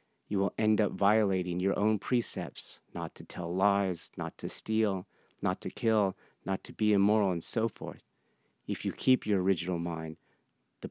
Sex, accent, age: male, American, 40-59